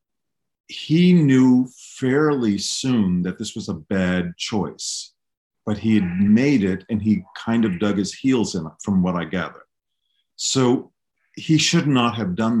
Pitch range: 105-130 Hz